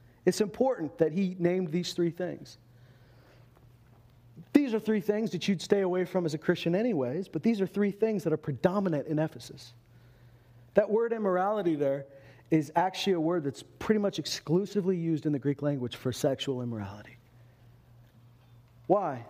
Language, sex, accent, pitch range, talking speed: English, male, American, 120-195 Hz, 160 wpm